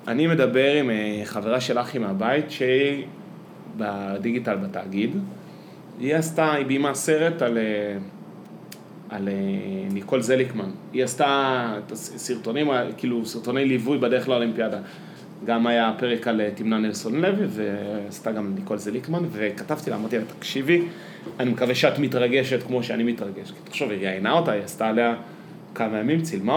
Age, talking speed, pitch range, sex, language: 30-49, 140 wpm, 115-170 Hz, male, Hebrew